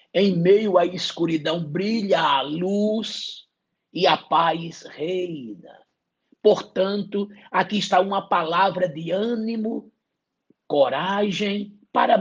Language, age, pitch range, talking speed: English, 60-79, 165-210 Hz, 100 wpm